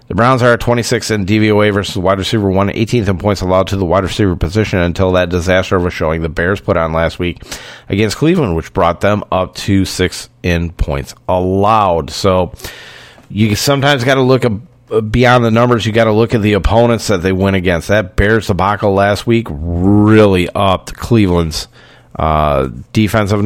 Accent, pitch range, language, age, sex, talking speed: American, 90-115 Hz, English, 40-59, male, 180 wpm